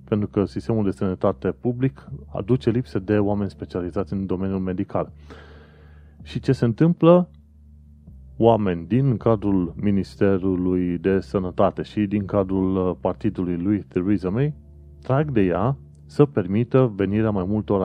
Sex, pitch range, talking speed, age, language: male, 90-115 Hz, 130 wpm, 30-49, Romanian